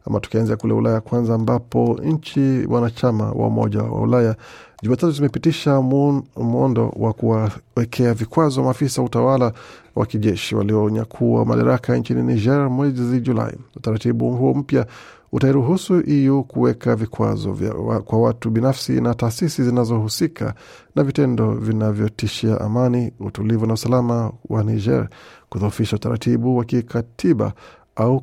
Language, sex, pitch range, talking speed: Swahili, male, 110-130 Hz, 115 wpm